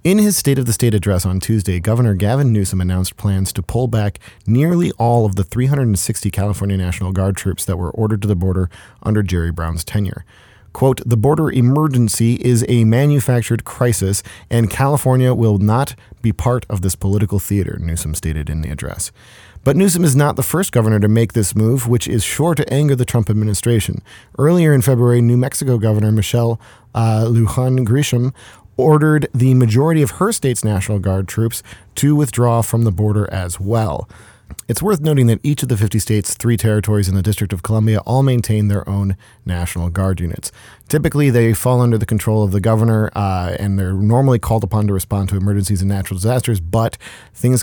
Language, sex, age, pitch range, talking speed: English, male, 40-59, 100-120 Hz, 190 wpm